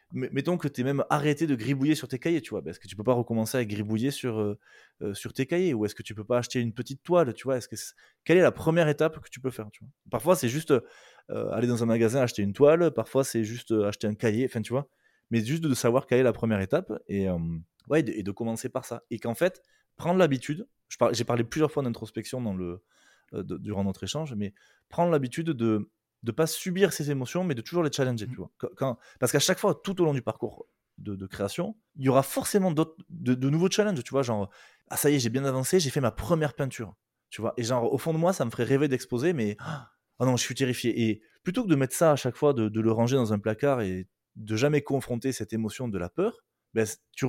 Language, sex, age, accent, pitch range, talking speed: French, male, 20-39, French, 110-150 Hz, 270 wpm